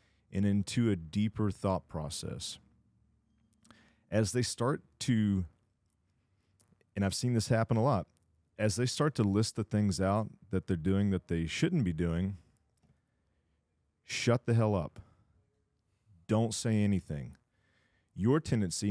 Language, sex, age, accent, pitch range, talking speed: English, male, 30-49, American, 90-110 Hz, 135 wpm